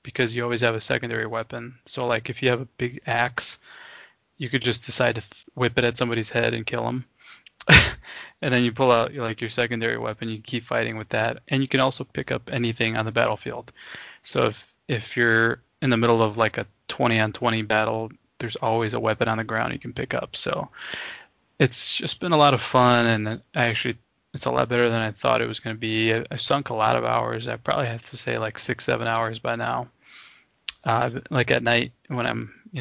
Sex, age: male, 20-39